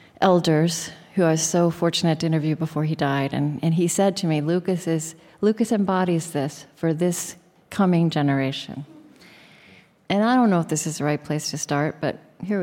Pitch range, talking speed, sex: 160-195 Hz, 190 wpm, female